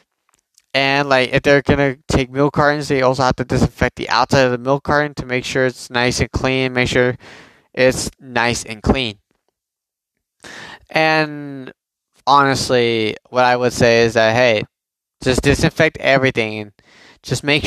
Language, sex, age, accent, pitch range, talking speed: English, male, 20-39, American, 125-145 Hz, 160 wpm